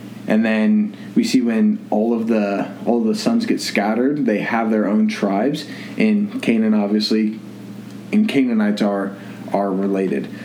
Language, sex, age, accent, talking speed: English, male, 20-39, American, 150 wpm